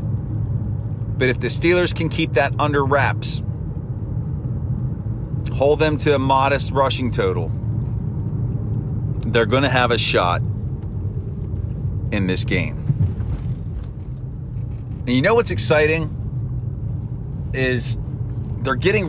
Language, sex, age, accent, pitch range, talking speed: English, male, 40-59, American, 115-135 Hz, 105 wpm